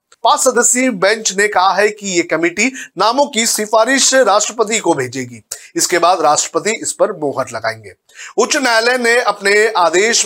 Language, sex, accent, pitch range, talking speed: Hindi, male, native, 170-230 Hz, 160 wpm